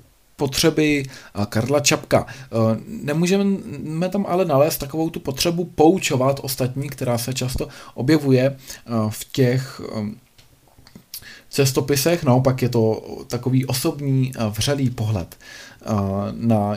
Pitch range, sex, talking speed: 115-140 Hz, male, 95 wpm